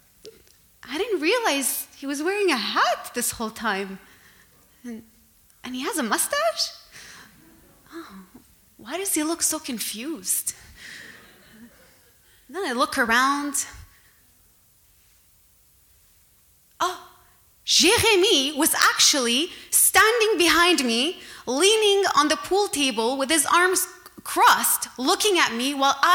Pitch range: 245-370 Hz